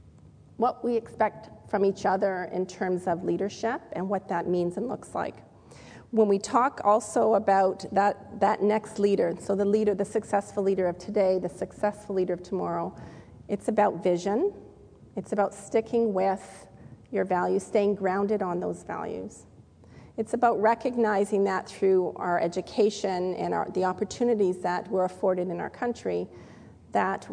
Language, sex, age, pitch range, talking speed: English, female, 40-59, 185-215 Hz, 155 wpm